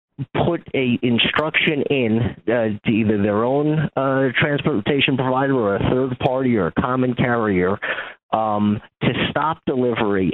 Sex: male